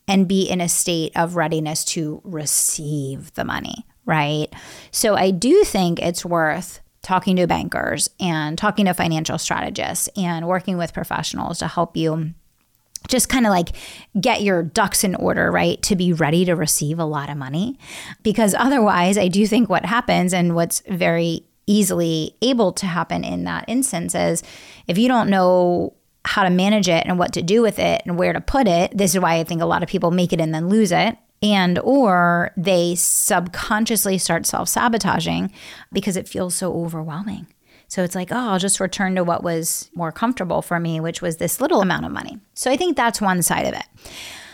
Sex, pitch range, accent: female, 165-205 Hz, American